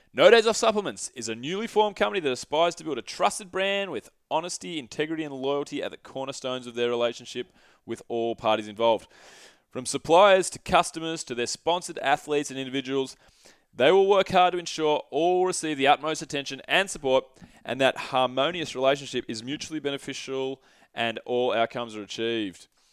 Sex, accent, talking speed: male, Australian, 175 wpm